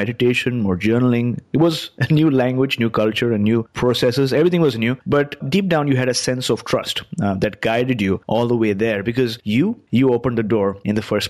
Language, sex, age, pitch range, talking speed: English, male, 30-49, 115-145 Hz, 225 wpm